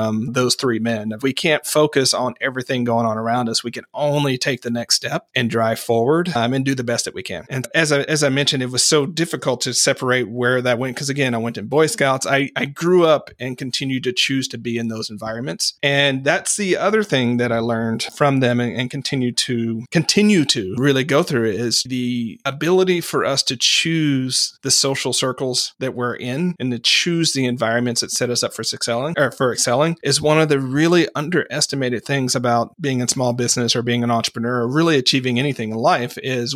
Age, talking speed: 40-59, 220 wpm